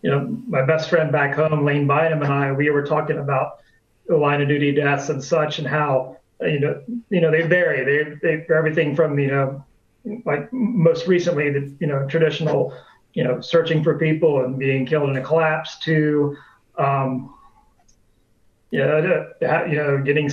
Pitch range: 140-165 Hz